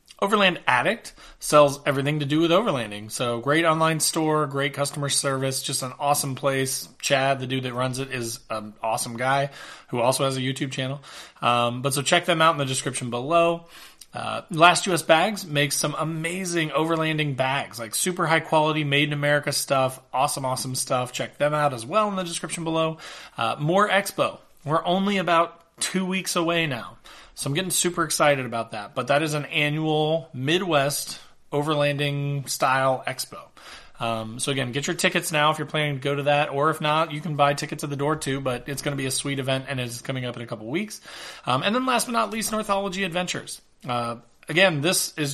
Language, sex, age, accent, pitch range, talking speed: English, male, 30-49, American, 135-165 Hz, 205 wpm